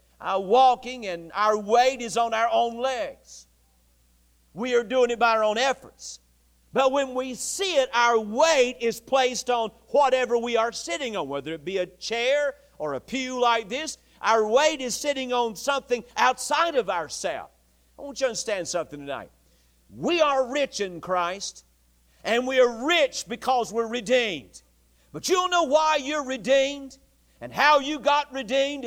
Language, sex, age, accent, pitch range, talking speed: English, male, 50-69, American, 220-285 Hz, 175 wpm